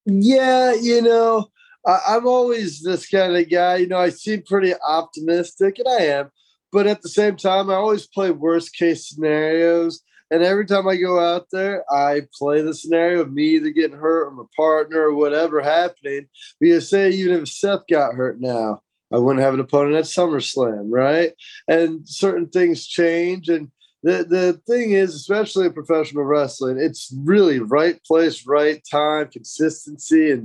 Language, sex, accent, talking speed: English, male, American, 175 wpm